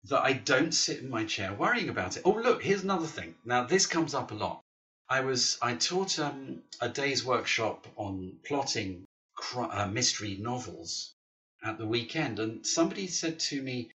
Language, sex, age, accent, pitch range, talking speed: English, male, 50-69, British, 110-160 Hz, 175 wpm